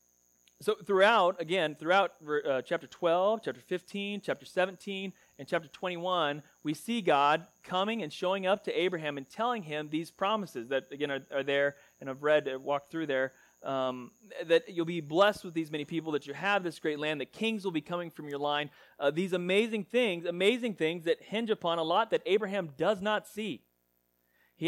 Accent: American